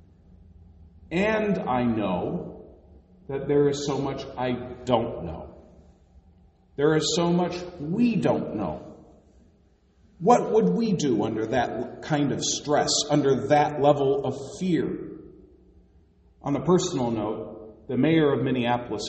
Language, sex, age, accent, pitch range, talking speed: English, male, 40-59, American, 90-150 Hz, 125 wpm